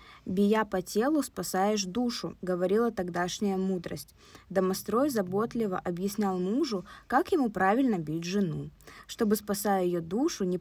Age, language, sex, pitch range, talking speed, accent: 20-39, Russian, female, 185-245 Hz, 130 wpm, native